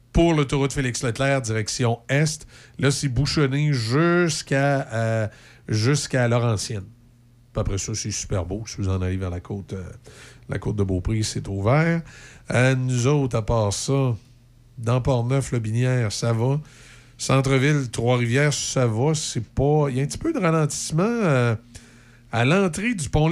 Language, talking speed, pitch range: French, 160 wpm, 115-155 Hz